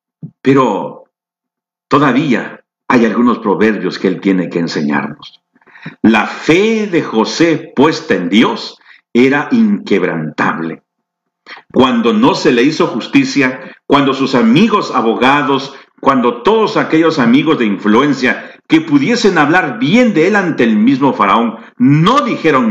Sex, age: male, 50-69